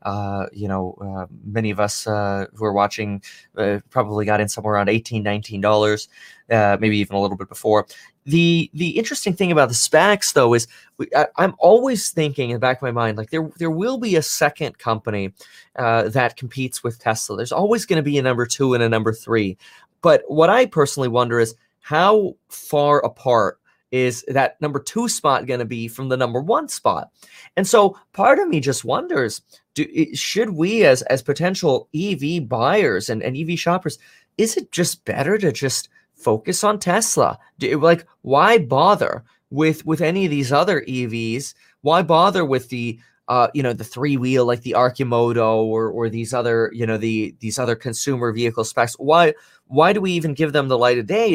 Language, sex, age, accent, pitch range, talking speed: English, male, 20-39, American, 115-165 Hz, 195 wpm